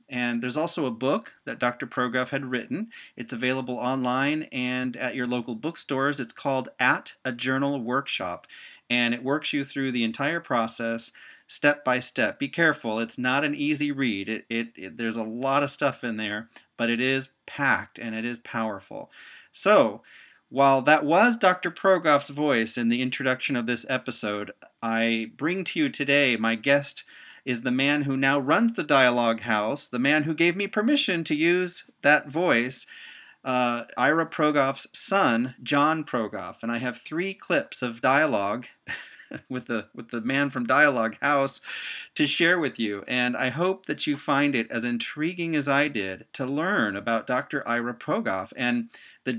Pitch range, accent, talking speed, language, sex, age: 120-145 Hz, American, 170 wpm, English, male, 40-59